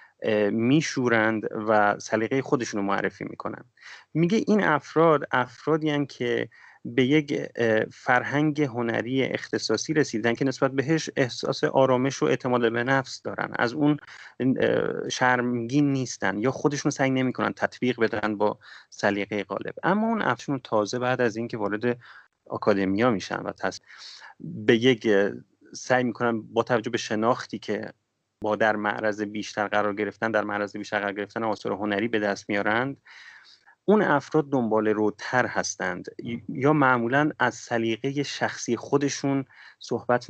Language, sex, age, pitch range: Persian, male, 30-49, 105-135 Hz